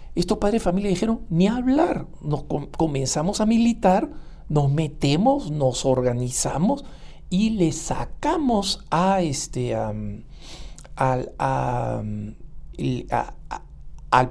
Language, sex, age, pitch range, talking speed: English, male, 60-79, 150-220 Hz, 90 wpm